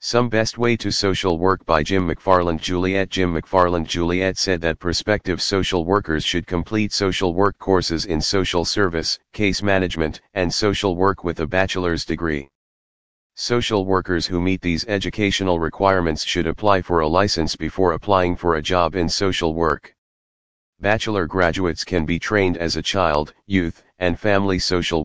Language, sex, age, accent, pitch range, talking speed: English, male, 40-59, American, 85-100 Hz, 160 wpm